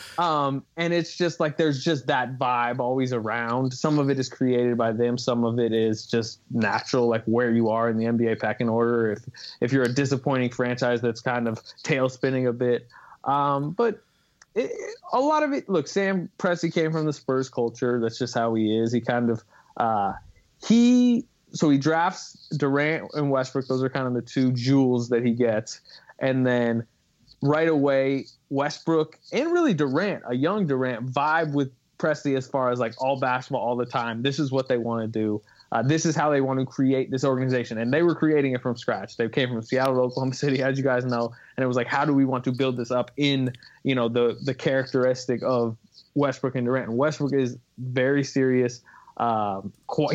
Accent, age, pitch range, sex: American, 20-39, 120-140 Hz, male